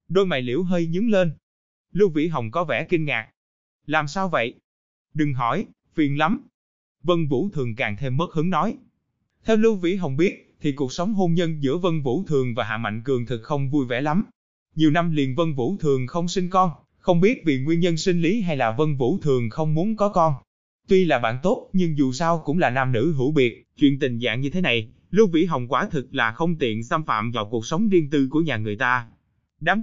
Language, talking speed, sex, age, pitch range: Vietnamese, 230 wpm, male, 20-39, 120-180 Hz